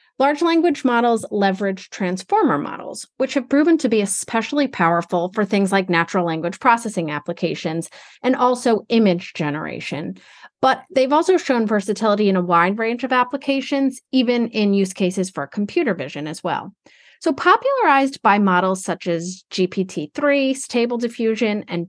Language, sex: English, female